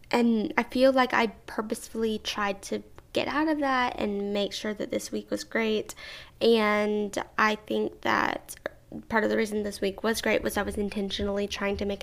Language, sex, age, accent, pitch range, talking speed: English, female, 10-29, American, 205-250 Hz, 195 wpm